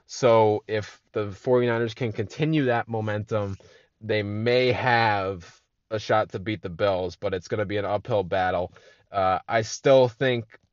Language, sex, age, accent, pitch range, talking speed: English, male, 20-39, American, 105-125 Hz, 160 wpm